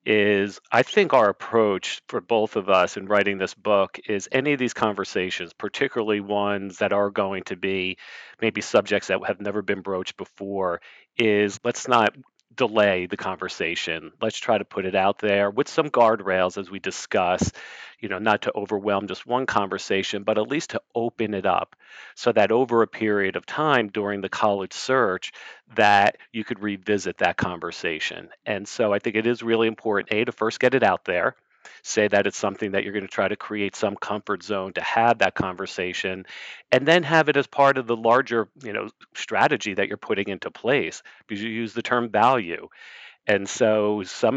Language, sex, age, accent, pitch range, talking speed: English, male, 40-59, American, 100-115 Hz, 195 wpm